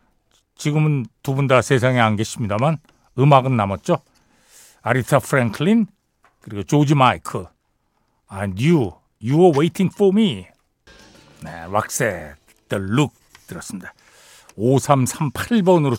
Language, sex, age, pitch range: Korean, male, 60-79, 115-180 Hz